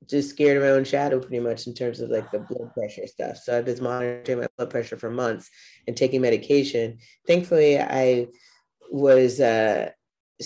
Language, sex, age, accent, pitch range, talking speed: English, female, 20-39, American, 120-140 Hz, 185 wpm